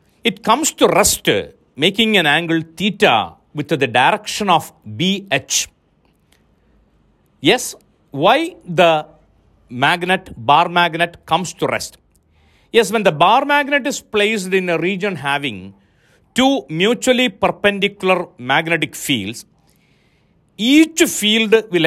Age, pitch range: 50-69, 155-220 Hz